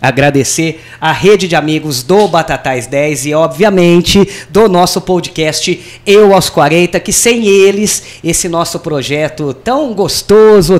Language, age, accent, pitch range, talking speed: Portuguese, 20-39, Brazilian, 150-195 Hz, 135 wpm